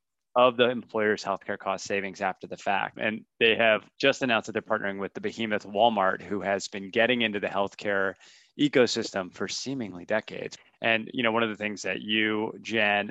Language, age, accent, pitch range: English, 20-39, American, 95-110 Hz